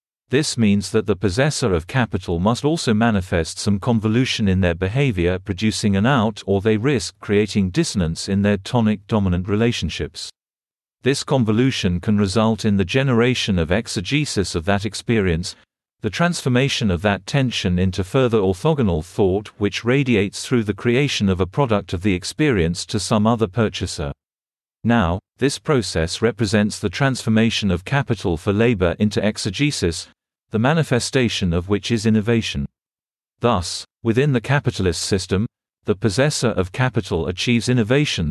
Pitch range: 95-120 Hz